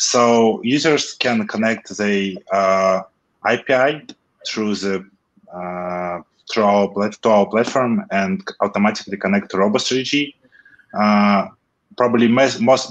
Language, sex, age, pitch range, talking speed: English, male, 20-39, 100-125 Hz, 100 wpm